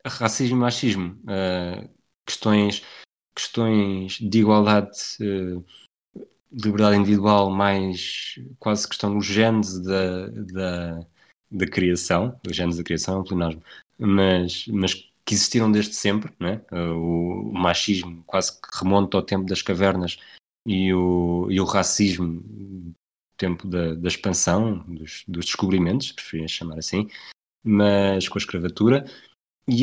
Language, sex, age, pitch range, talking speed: Portuguese, male, 20-39, 90-110 Hz, 130 wpm